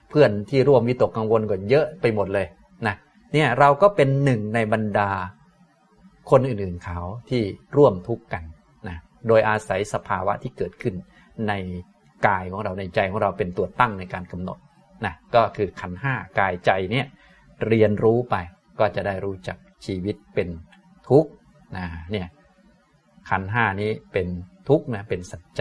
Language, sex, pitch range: Thai, male, 105-165 Hz